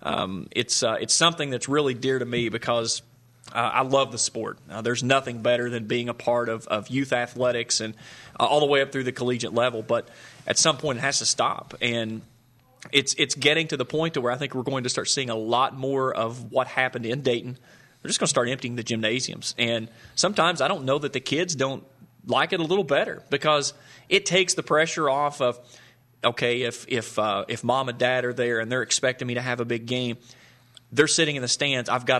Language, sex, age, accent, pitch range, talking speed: English, male, 30-49, American, 120-160 Hz, 235 wpm